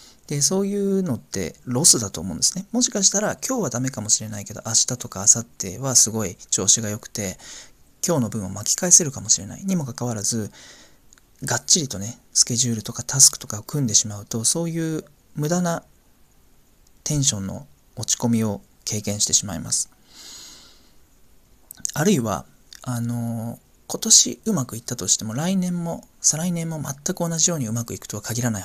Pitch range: 105-145 Hz